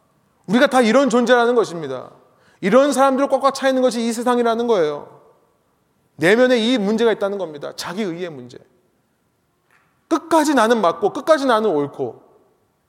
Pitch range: 165-230 Hz